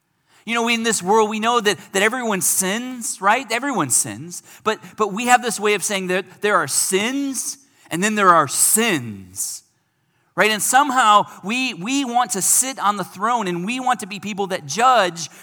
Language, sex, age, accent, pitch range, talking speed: English, male, 40-59, American, 140-205 Hz, 200 wpm